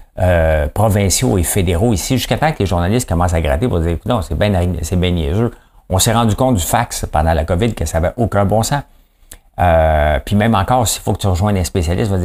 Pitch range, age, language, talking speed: 85-110 Hz, 50-69, English, 245 wpm